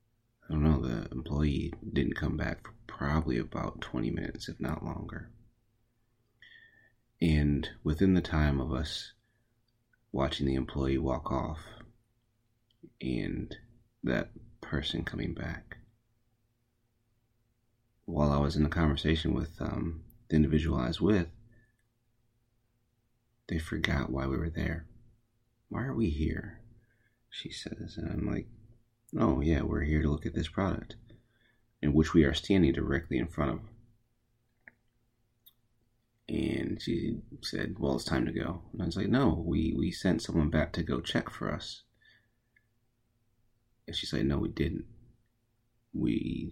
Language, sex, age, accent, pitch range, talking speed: English, male, 30-49, American, 80-115 Hz, 140 wpm